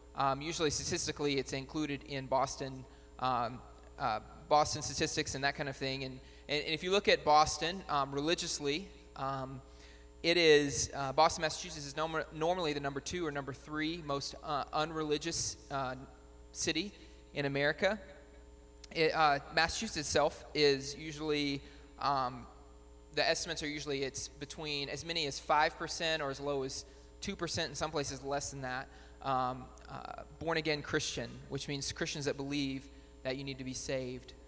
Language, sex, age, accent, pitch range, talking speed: English, male, 20-39, American, 135-155 Hz, 160 wpm